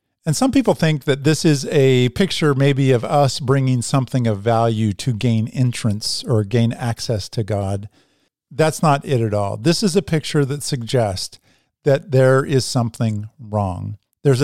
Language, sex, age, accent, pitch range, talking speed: English, male, 50-69, American, 120-155 Hz, 170 wpm